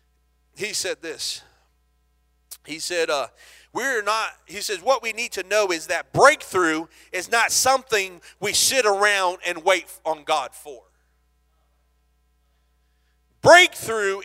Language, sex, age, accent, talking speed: English, male, 40-59, American, 125 wpm